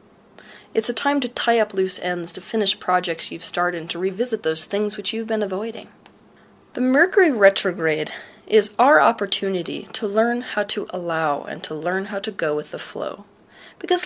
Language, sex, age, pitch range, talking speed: English, female, 20-39, 175-235 Hz, 180 wpm